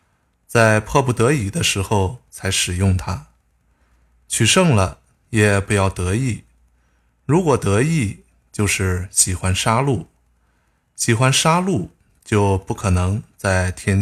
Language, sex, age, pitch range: Chinese, male, 20-39, 95-125 Hz